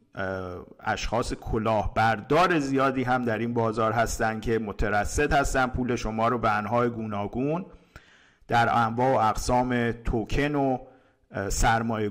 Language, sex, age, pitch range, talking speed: Persian, male, 50-69, 110-130 Hz, 125 wpm